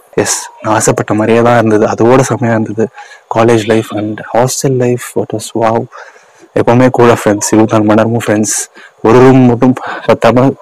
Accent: native